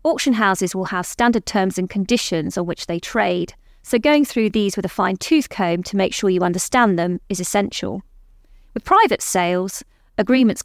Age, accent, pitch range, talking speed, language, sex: 30-49, British, 175-215 Hz, 185 wpm, English, female